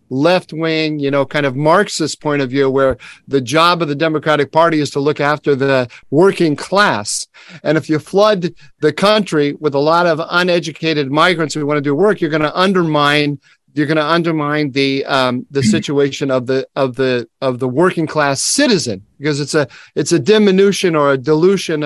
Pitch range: 140-175 Hz